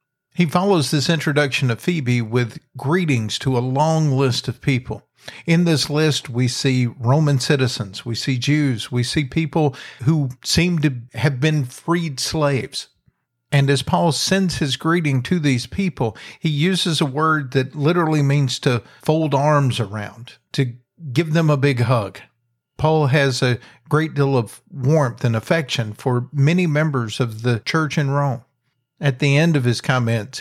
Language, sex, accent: English, male, American